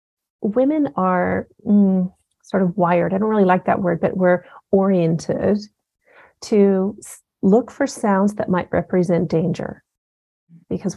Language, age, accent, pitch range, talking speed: English, 40-59, American, 180-215 Hz, 130 wpm